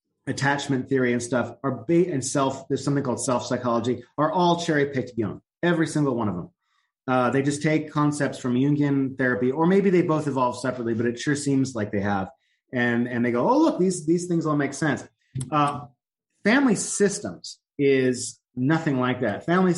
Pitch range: 120-145 Hz